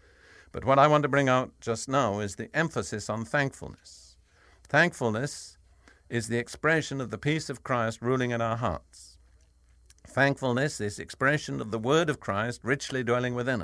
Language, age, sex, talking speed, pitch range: English, 60-79, male, 170 wpm, 85-130 Hz